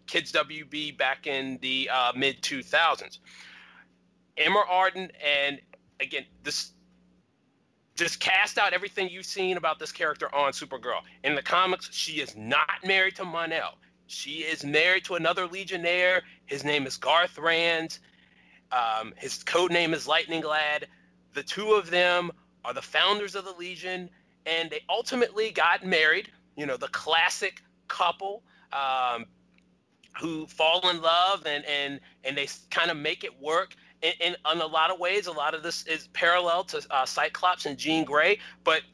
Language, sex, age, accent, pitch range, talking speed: English, male, 30-49, American, 150-200 Hz, 155 wpm